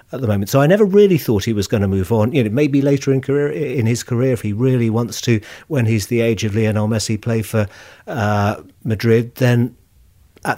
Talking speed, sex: 235 wpm, male